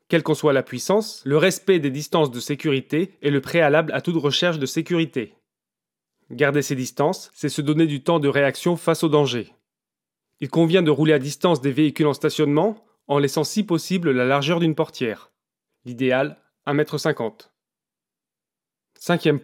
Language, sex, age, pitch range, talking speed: French, male, 30-49, 140-165 Hz, 165 wpm